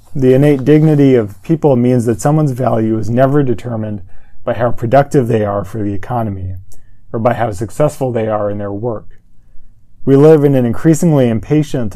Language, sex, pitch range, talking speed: English, male, 105-130 Hz, 175 wpm